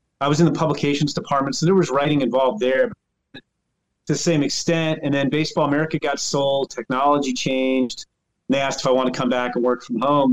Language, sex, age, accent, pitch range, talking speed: English, male, 30-49, American, 130-180 Hz, 215 wpm